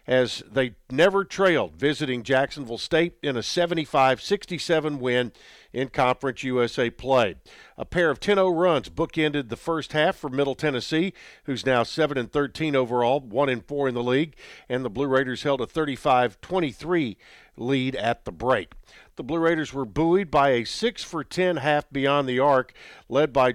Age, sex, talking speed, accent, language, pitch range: 50-69, male, 155 wpm, American, English, 130-160 Hz